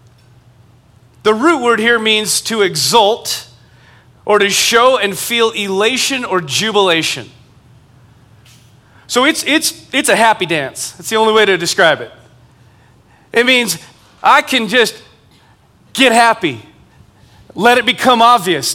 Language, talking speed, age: English, 130 wpm, 30-49